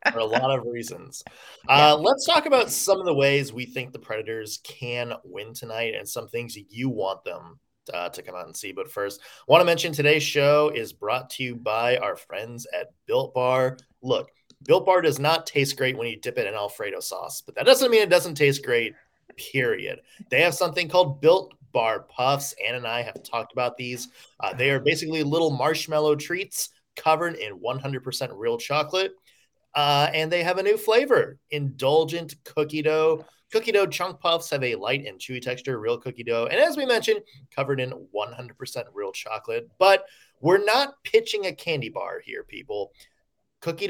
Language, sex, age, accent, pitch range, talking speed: English, male, 20-39, American, 125-195 Hz, 195 wpm